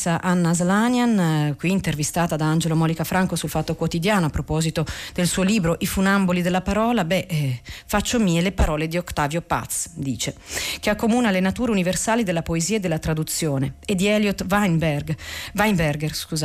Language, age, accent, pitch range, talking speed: Italian, 40-59, native, 160-210 Hz, 160 wpm